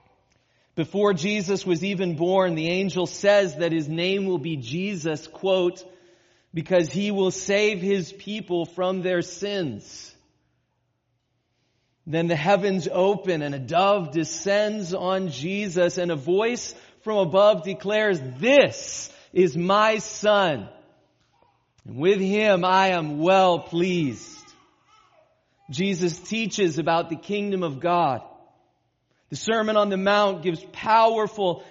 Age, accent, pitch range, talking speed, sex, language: 30-49, American, 165-200 Hz, 125 wpm, male, English